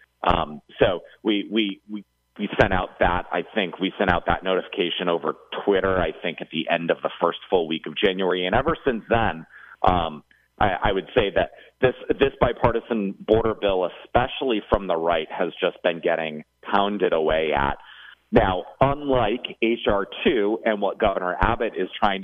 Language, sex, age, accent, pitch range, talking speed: English, male, 30-49, American, 85-120 Hz, 180 wpm